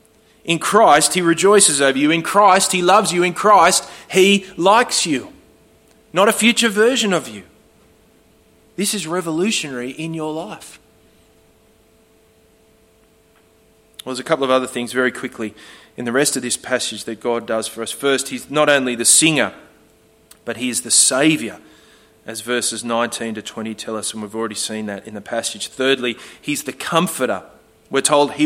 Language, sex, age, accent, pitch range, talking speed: English, male, 30-49, Australian, 125-185 Hz, 170 wpm